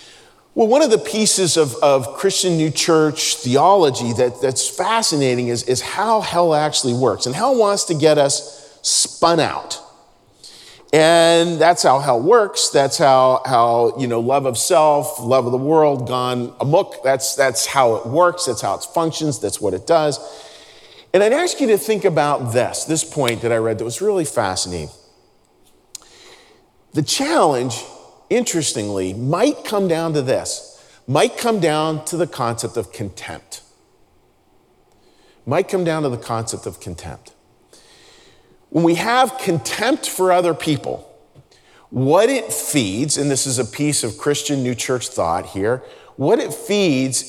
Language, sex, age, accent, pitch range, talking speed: English, male, 40-59, American, 130-185 Hz, 160 wpm